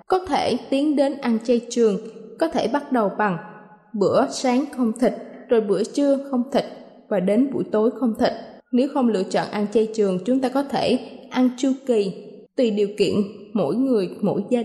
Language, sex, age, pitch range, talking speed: Vietnamese, female, 20-39, 215-270 Hz, 195 wpm